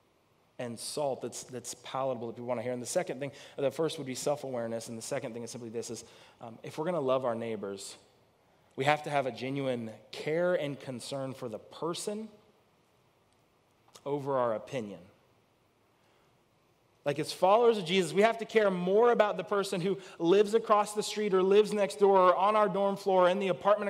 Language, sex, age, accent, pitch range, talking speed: English, male, 30-49, American, 130-185 Hz, 205 wpm